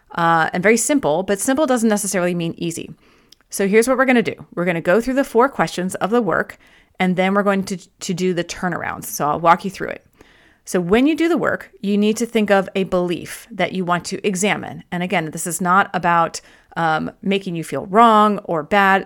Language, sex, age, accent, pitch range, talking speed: English, female, 30-49, American, 175-230 Hz, 235 wpm